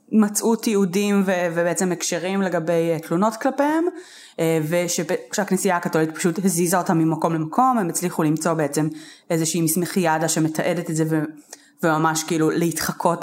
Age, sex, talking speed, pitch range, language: 20-39, female, 130 wpm, 155-215 Hz, Hebrew